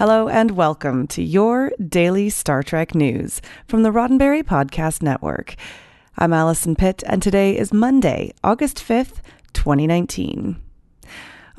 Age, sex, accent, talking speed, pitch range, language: 30-49, female, American, 125 wpm, 160-225 Hz, English